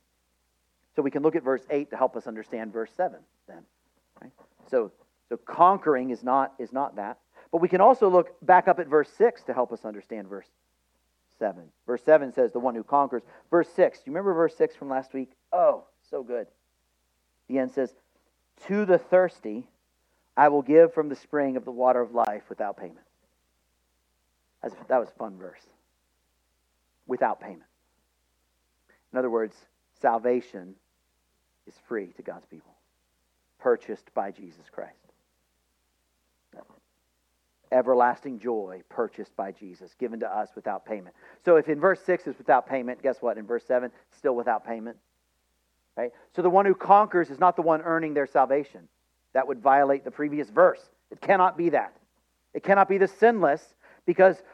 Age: 40-59